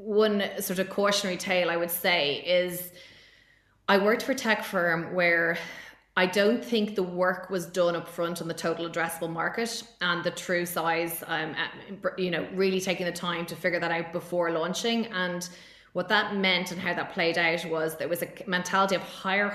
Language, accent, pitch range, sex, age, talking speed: English, Irish, 170-195 Hz, female, 20-39, 195 wpm